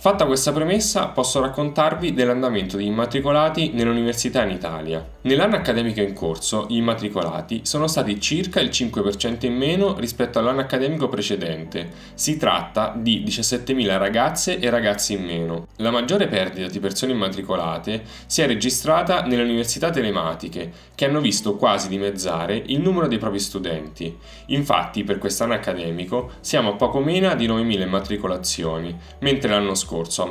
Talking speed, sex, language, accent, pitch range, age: 145 wpm, male, Italian, native, 95-135 Hz, 10-29